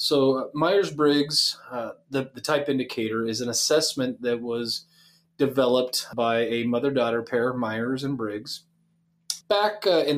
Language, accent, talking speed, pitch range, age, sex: English, American, 130 wpm, 115-155 Hz, 30-49, male